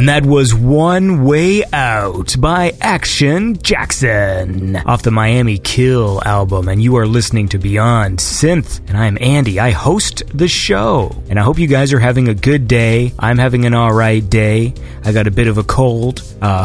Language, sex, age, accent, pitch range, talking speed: English, male, 30-49, American, 105-145 Hz, 185 wpm